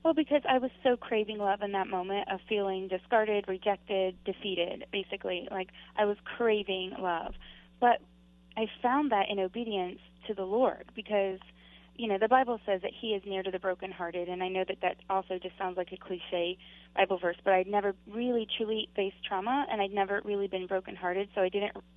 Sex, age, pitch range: female, 20-39, 180-205 Hz